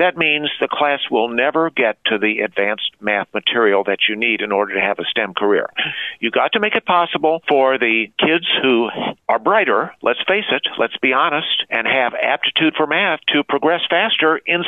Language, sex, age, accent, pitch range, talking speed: English, male, 50-69, American, 130-170 Hz, 200 wpm